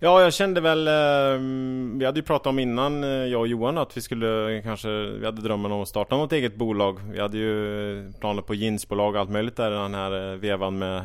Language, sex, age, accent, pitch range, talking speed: Swedish, male, 30-49, Norwegian, 95-110 Hz, 210 wpm